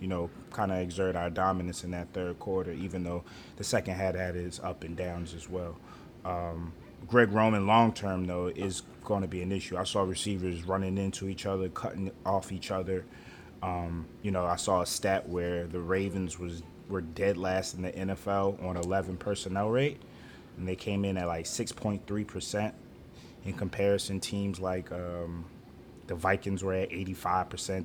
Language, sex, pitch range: English, male, 90-105 Hz